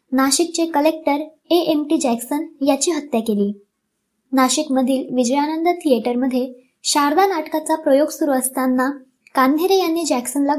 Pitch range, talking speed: 255-315 Hz, 110 wpm